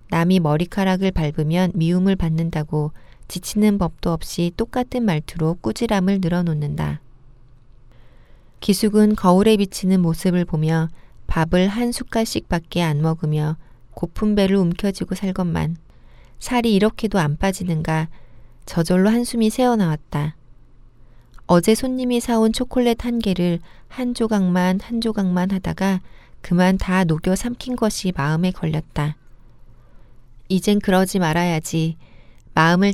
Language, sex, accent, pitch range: Korean, female, native, 155-195 Hz